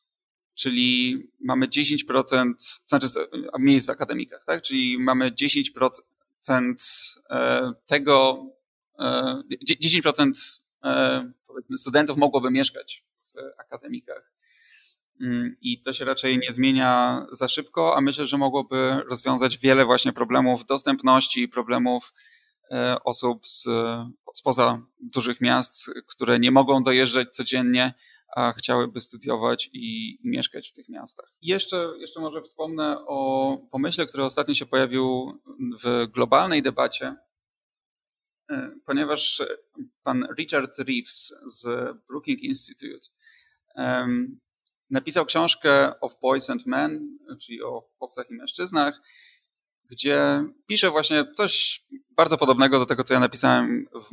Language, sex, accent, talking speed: Polish, male, native, 110 wpm